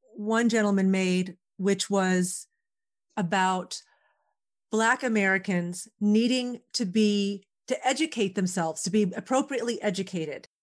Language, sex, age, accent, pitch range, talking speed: English, female, 40-59, American, 185-235 Hz, 100 wpm